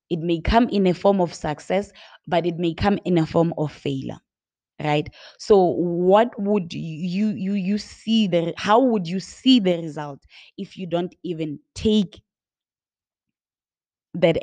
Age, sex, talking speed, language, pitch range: 20-39, female, 160 wpm, English, 165-195 Hz